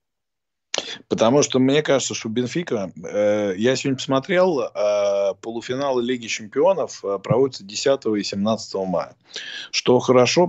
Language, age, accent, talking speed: Russian, 20-39, native, 120 wpm